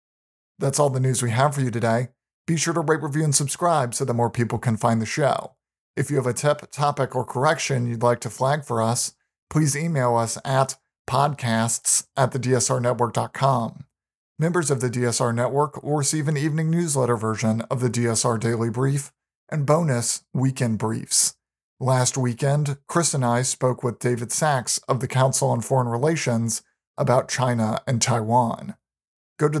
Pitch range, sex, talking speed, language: 120-145 Hz, male, 175 wpm, English